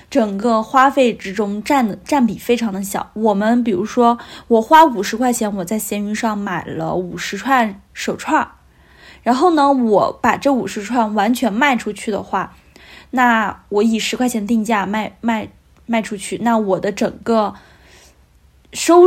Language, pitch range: Chinese, 205-250 Hz